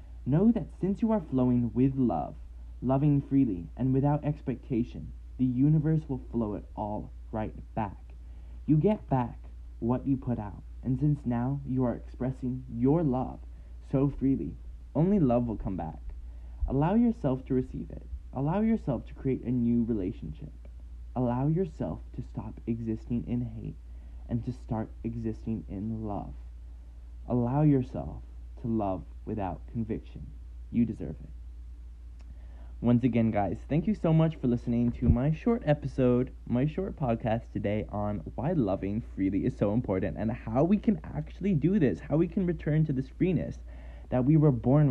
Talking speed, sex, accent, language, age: 160 wpm, male, American, English, 20-39